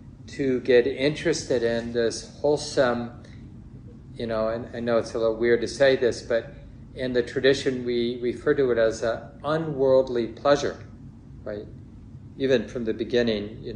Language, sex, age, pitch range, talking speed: English, male, 40-59, 115-130 Hz, 155 wpm